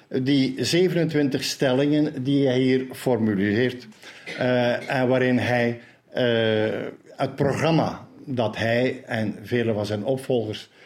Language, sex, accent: Dutch, male, Dutch